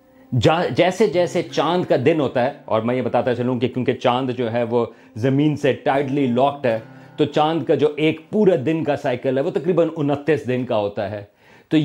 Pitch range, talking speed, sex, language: 125-160 Hz, 200 wpm, male, Urdu